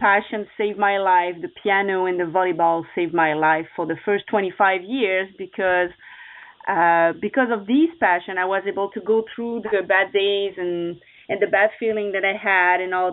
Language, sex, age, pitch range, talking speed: English, female, 30-49, 190-230 Hz, 190 wpm